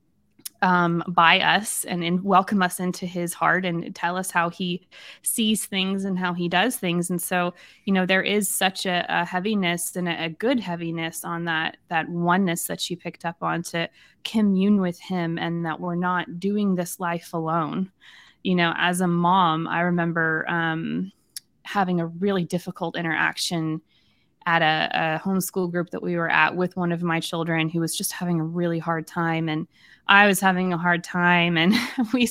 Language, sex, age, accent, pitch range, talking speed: English, female, 20-39, American, 170-200 Hz, 190 wpm